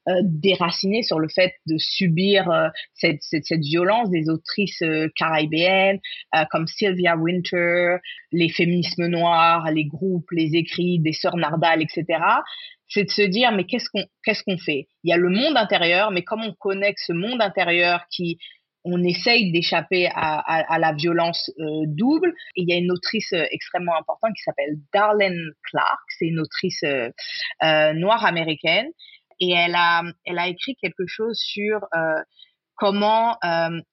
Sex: female